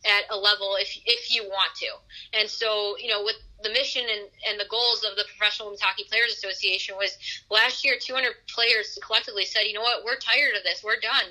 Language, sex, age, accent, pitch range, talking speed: English, female, 20-39, American, 200-235 Hz, 225 wpm